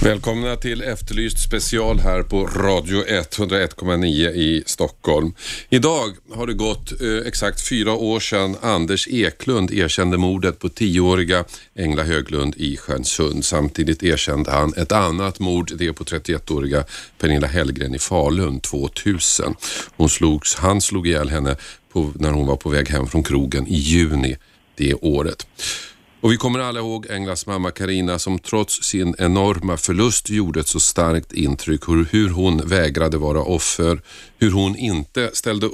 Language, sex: Swedish, male